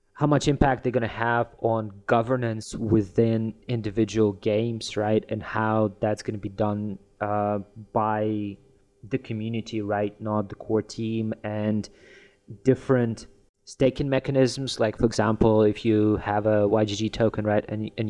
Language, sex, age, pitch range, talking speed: English, male, 20-39, 105-120 Hz, 150 wpm